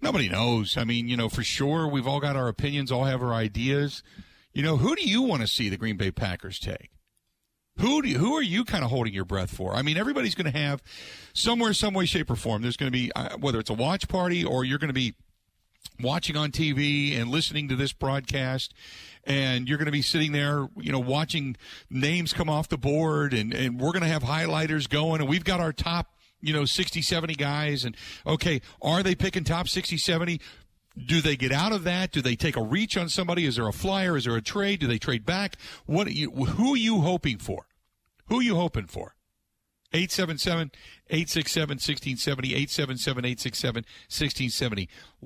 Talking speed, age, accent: 210 wpm, 50-69, American